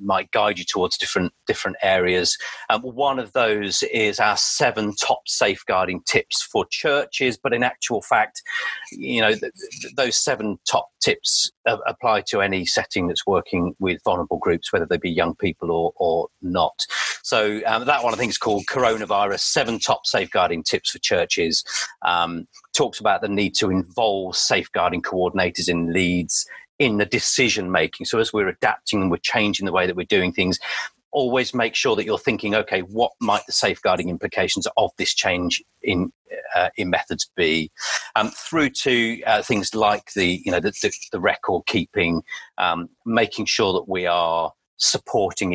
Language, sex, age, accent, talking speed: English, male, 40-59, British, 175 wpm